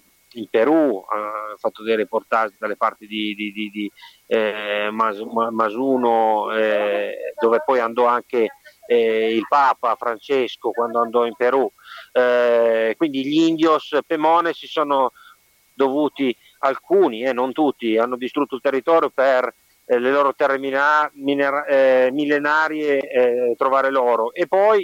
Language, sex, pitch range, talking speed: Italian, male, 120-155 Hz, 145 wpm